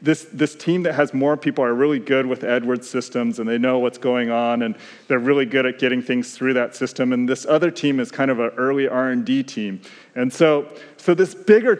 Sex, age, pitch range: male, 30-49, 130-160 Hz